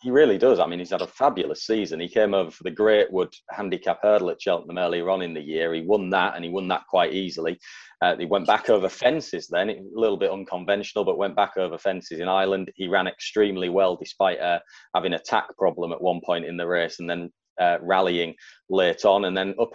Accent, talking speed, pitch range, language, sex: British, 235 wpm, 90-110 Hz, English, male